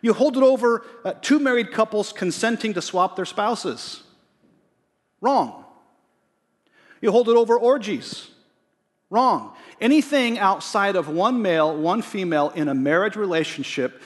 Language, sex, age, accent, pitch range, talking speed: English, male, 40-59, American, 160-230 Hz, 130 wpm